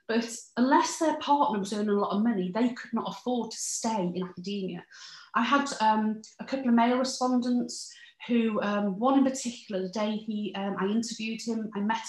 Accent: British